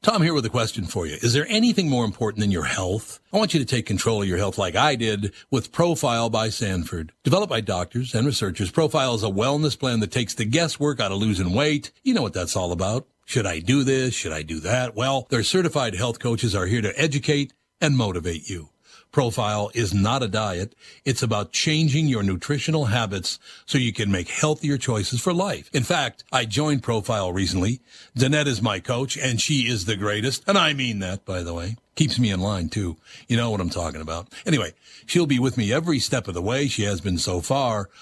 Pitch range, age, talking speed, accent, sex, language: 100-135 Hz, 60-79, 225 wpm, American, male, English